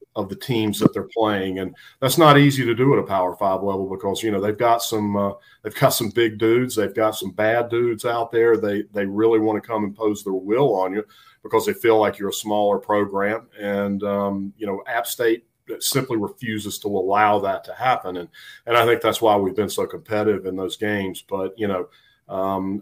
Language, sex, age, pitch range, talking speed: English, male, 40-59, 100-115 Hz, 225 wpm